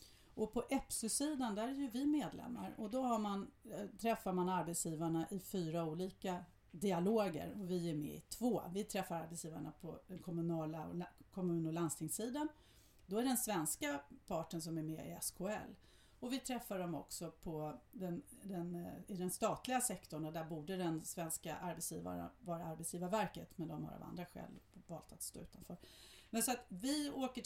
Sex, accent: female, native